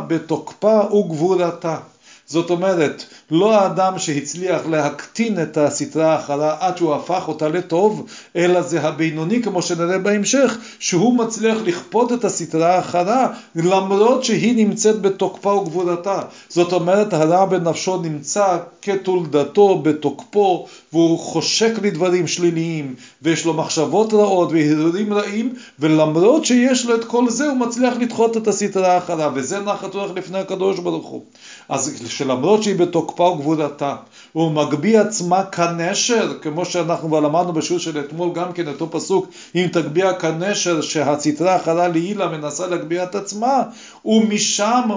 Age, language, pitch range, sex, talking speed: 40-59, Hebrew, 165-205 Hz, male, 135 wpm